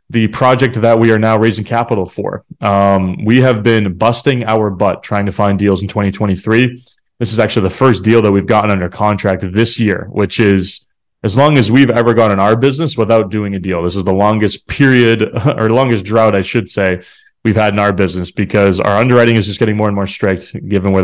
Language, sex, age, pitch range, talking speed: English, male, 20-39, 100-120 Hz, 220 wpm